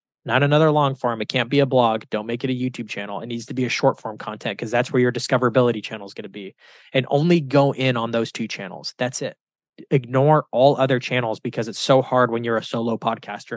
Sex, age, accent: male, 20-39, American